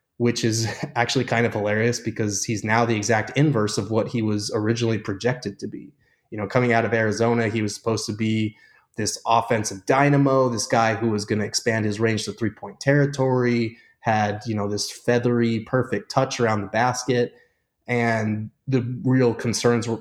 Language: English